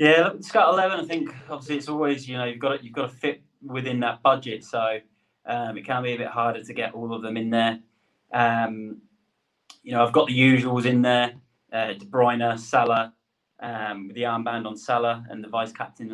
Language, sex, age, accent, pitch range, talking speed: English, male, 20-39, British, 110-130 Hz, 210 wpm